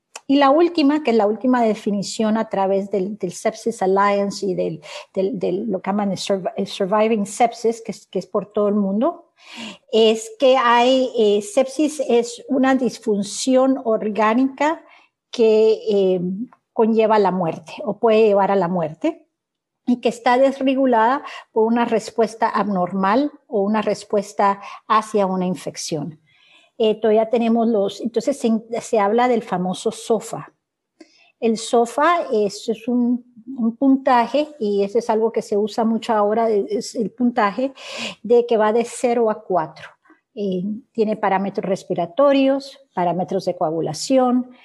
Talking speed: 150 wpm